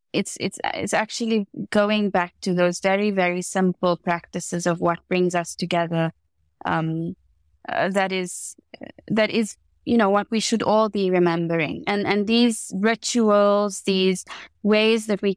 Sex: female